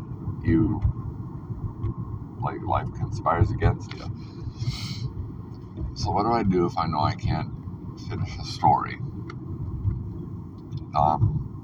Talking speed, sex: 105 wpm, male